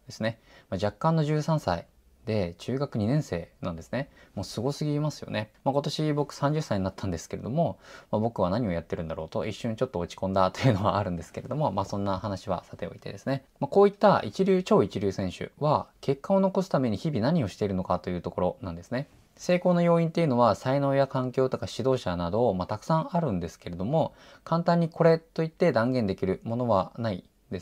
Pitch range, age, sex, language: 100-145 Hz, 20-39, male, Japanese